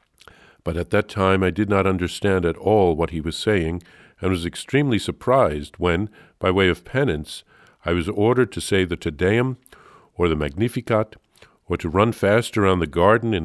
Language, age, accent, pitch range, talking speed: English, 50-69, American, 85-120 Hz, 185 wpm